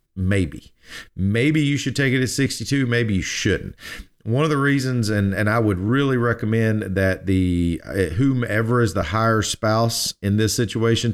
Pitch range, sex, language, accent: 100-120 Hz, male, English, American